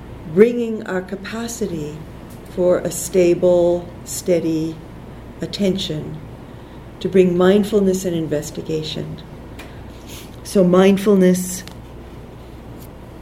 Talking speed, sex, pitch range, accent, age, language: 70 wpm, female, 150-180 Hz, American, 50-69, English